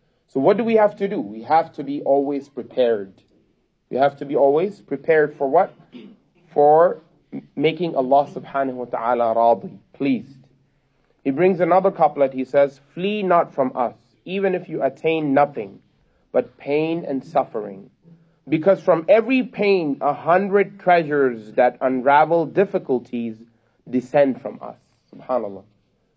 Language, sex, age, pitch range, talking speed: English, male, 30-49, 140-180 Hz, 140 wpm